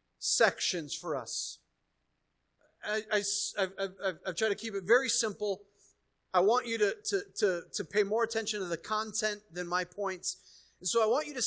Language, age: English, 30-49